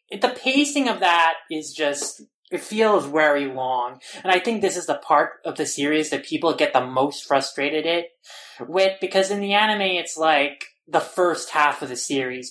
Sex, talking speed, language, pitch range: male, 185 wpm, English, 145-185 Hz